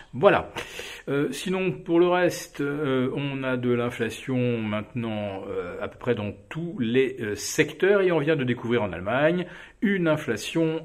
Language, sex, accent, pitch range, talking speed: French, male, French, 115-170 Hz, 160 wpm